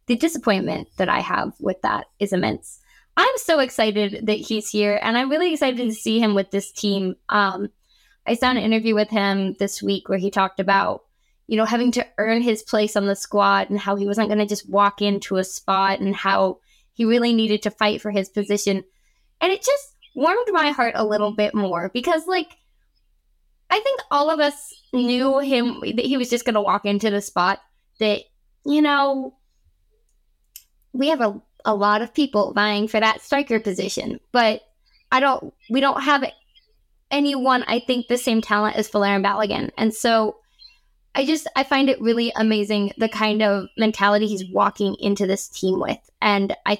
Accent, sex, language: American, female, English